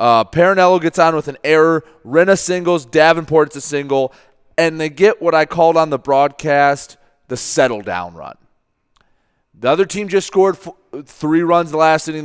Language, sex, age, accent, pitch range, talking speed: English, male, 30-49, American, 120-160 Hz, 175 wpm